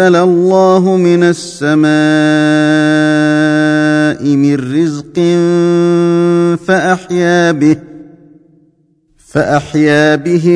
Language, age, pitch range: Arabic, 40-59, 150-175 Hz